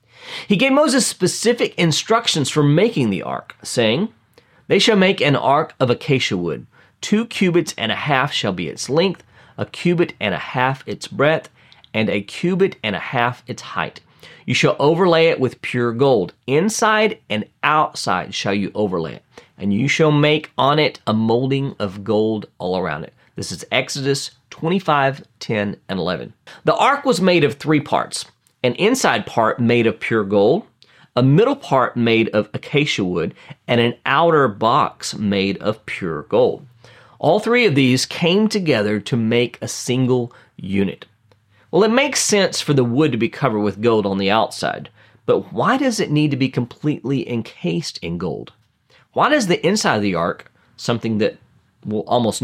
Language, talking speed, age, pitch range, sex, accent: English, 175 wpm, 40-59, 110-165 Hz, male, American